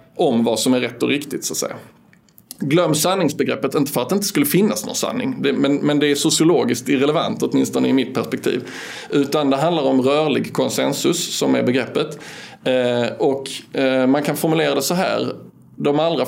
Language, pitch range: Swedish, 120-145 Hz